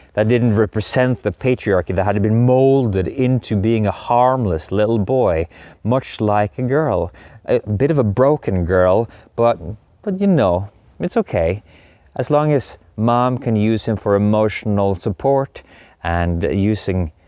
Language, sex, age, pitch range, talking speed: English, male, 30-49, 90-115 Hz, 150 wpm